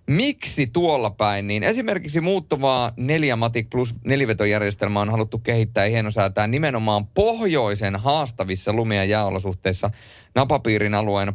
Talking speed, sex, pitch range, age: 100 wpm, male, 95-120 Hz, 30-49